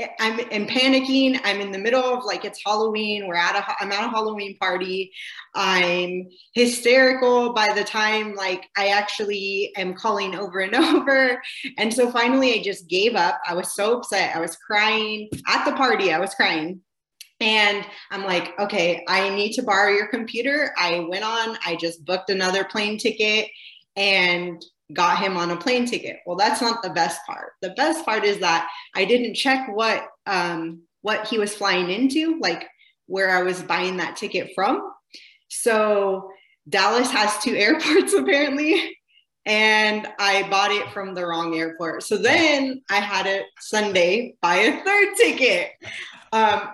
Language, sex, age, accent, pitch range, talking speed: English, female, 20-39, American, 190-240 Hz, 170 wpm